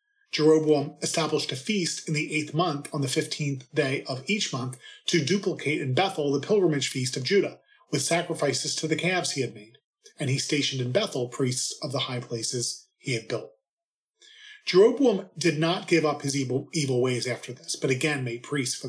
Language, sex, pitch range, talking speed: English, male, 130-165 Hz, 195 wpm